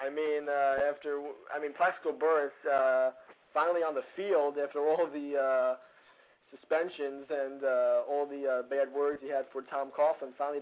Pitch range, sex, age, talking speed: 135-160 Hz, male, 20-39, 170 wpm